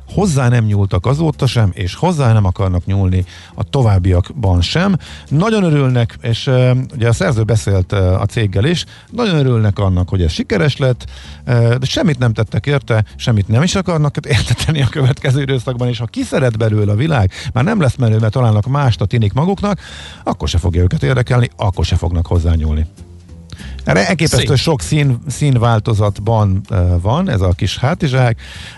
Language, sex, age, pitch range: Hungarian, male, 50-69, 95-135 Hz